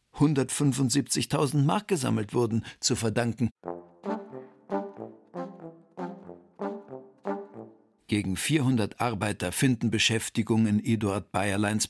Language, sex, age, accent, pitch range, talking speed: German, male, 50-69, German, 105-140 Hz, 65 wpm